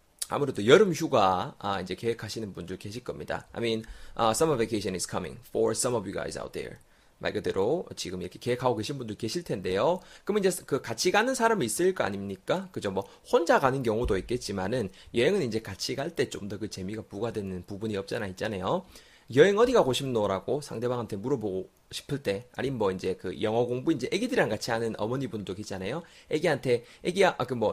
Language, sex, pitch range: Korean, male, 100-160 Hz